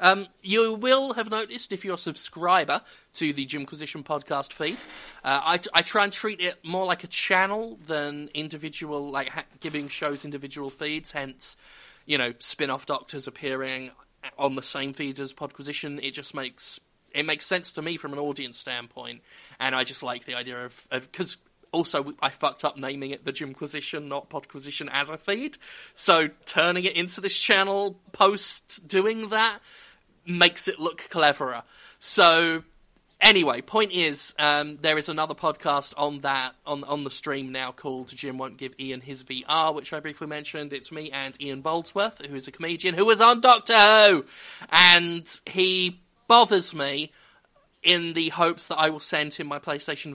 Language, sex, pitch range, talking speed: English, male, 140-180 Hz, 175 wpm